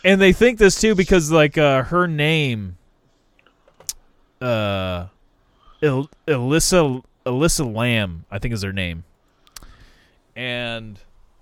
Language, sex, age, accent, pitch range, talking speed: English, male, 20-39, American, 105-165 Hz, 105 wpm